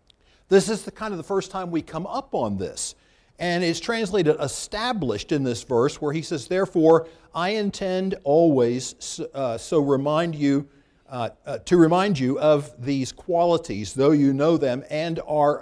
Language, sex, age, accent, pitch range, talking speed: English, male, 50-69, American, 130-195 Hz, 175 wpm